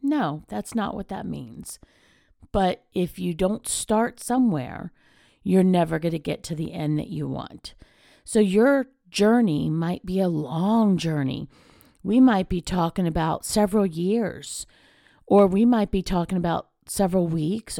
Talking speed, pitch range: 155 wpm, 170-230 Hz